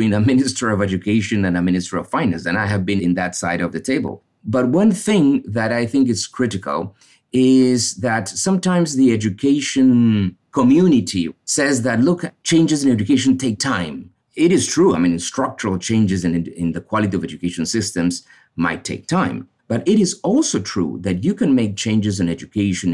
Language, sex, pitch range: English, male, 95-130 Hz